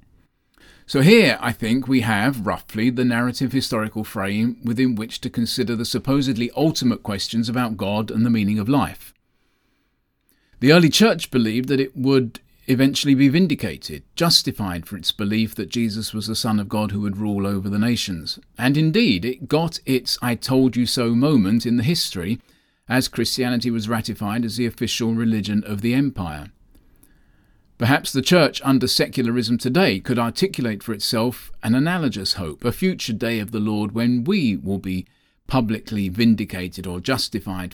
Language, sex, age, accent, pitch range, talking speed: English, male, 40-59, British, 110-130 Hz, 165 wpm